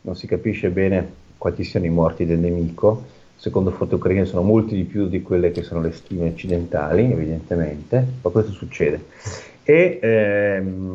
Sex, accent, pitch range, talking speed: male, native, 85-110 Hz, 165 wpm